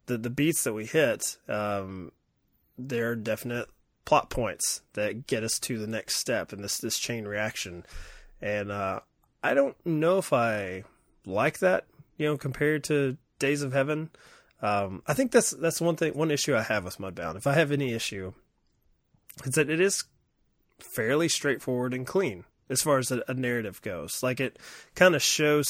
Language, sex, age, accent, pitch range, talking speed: English, male, 20-39, American, 105-145 Hz, 175 wpm